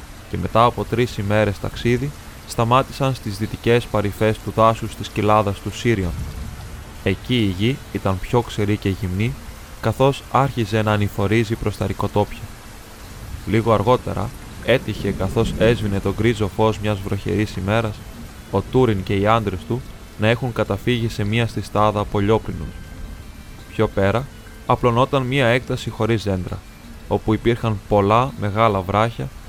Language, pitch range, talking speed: Greek, 100-115 Hz, 135 wpm